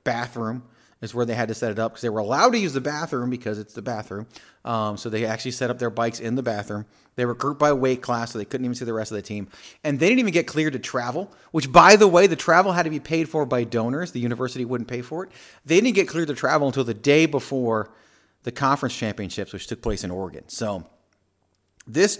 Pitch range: 110-150 Hz